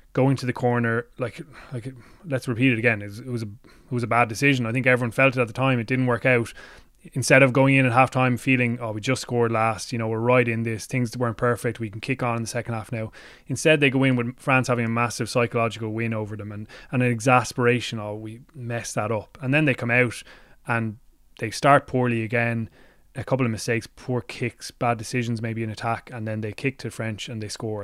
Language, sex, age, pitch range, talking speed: English, male, 20-39, 110-125 Hz, 250 wpm